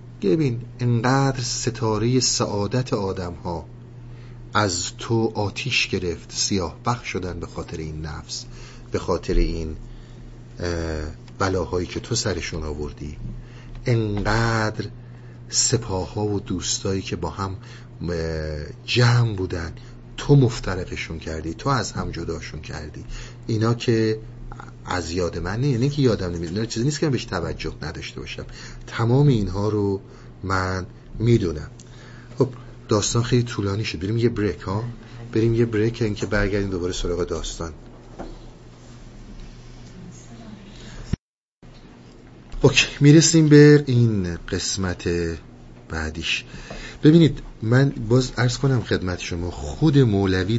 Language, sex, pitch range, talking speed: Persian, male, 90-120 Hz, 120 wpm